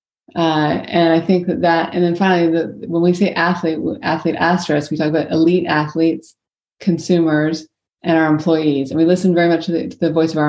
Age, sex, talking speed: 30-49, female, 210 wpm